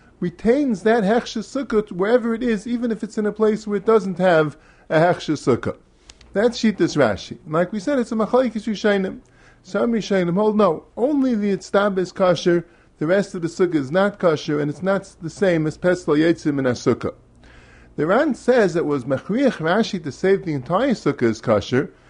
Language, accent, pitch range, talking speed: English, American, 165-230 Hz, 205 wpm